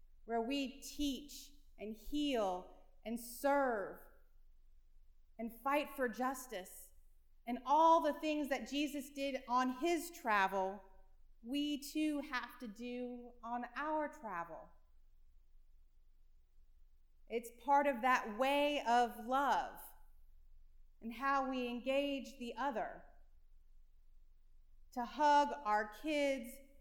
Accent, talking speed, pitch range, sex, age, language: American, 105 wpm, 210-275 Hz, female, 30-49, English